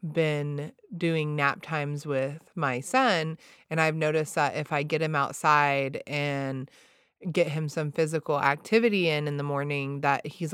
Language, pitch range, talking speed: English, 145-170 Hz, 160 wpm